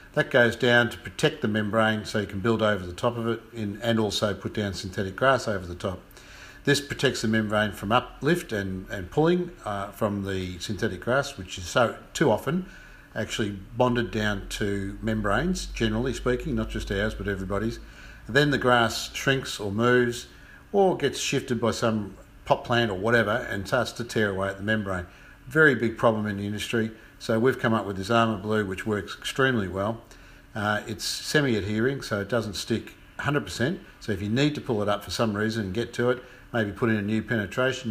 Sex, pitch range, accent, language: male, 100-120 Hz, Australian, English